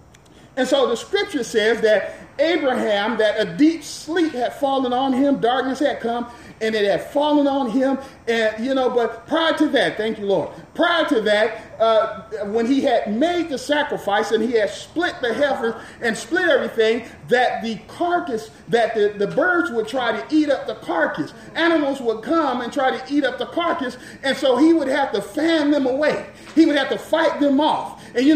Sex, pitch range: male, 230-295 Hz